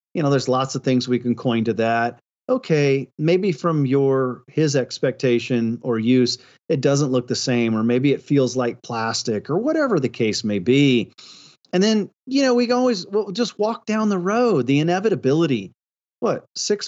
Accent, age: American, 40-59